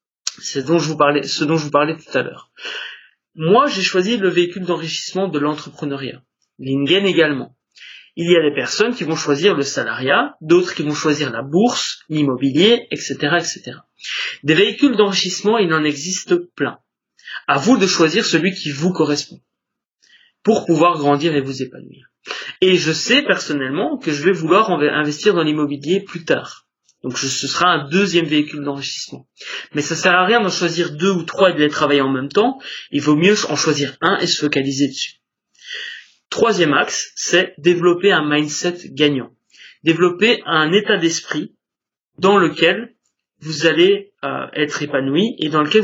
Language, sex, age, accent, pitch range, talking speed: French, male, 30-49, French, 150-185 Hz, 170 wpm